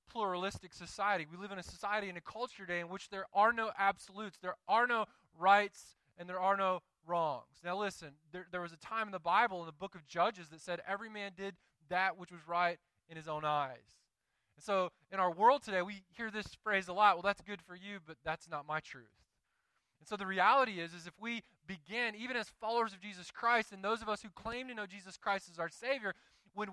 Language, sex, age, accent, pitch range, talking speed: English, male, 20-39, American, 150-200 Hz, 235 wpm